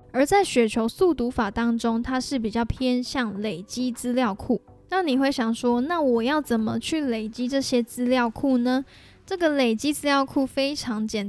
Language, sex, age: Chinese, female, 10-29